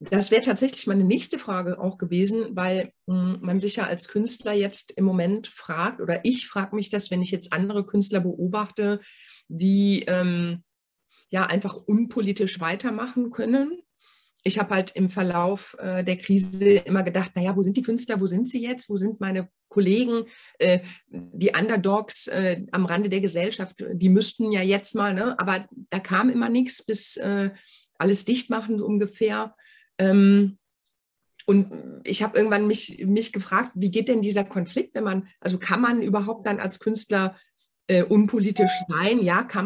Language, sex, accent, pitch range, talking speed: German, female, German, 190-225 Hz, 170 wpm